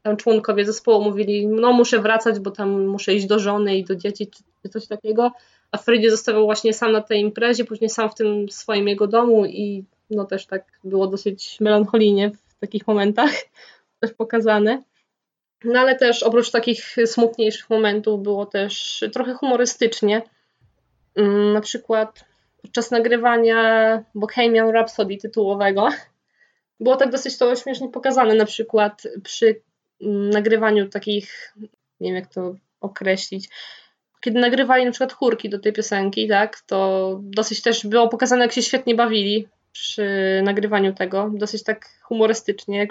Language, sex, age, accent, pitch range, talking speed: Polish, female, 20-39, native, 205-235 Hz, 145 wpm